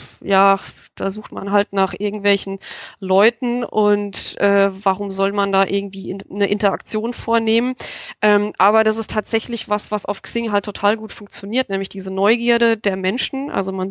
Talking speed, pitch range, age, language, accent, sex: 170 wpm, 195-225 Hz, 20-39, German, German, female